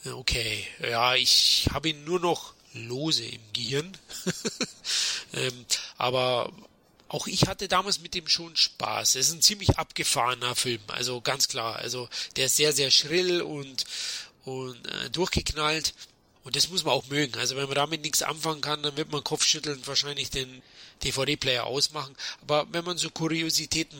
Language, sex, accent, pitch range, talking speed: German, male, German, 125-160 Hz, 165 wpm